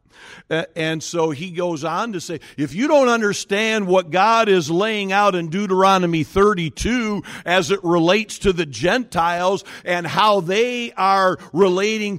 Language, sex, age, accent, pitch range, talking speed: English, male, 50-69, American, 150-230 Hz, 150 wpm